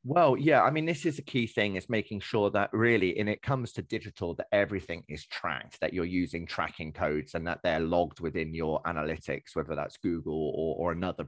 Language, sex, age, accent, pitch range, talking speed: English, male, 30-49, British, 85-110 Hz, 220 wpm